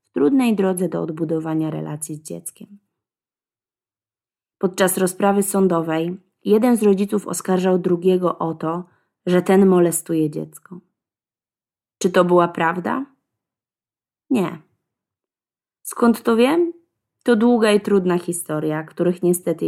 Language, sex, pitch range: Polish, female, 165-210 Hz